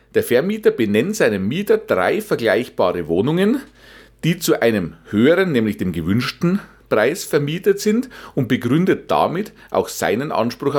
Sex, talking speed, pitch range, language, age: male, 135 wpm, 125-180 Hz, German, 40-59